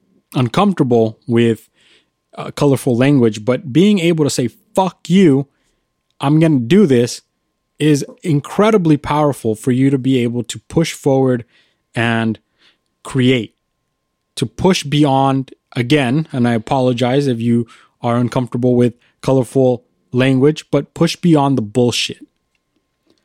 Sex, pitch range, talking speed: male, 120-150 Hz, 125 wpm